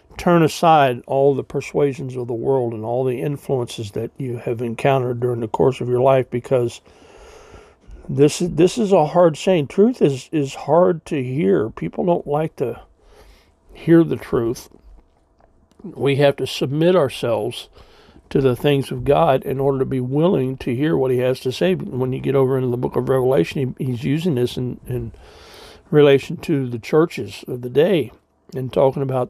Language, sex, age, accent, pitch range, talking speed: English, male, 60-79, American, 125-150 Hz, 185 wpm